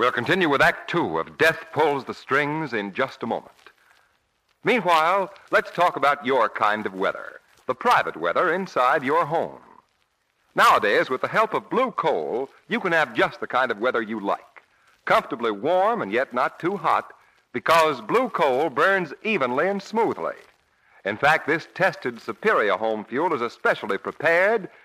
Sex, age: male, 50-69